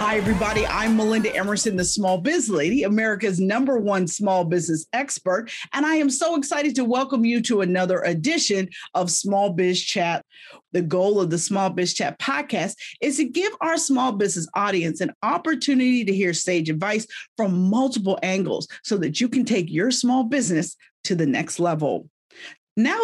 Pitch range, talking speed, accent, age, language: 180-255 Hz, 175 wpm, American, 40-59, English